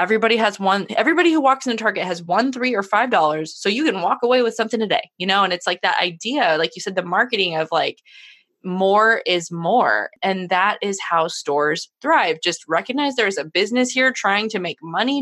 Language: English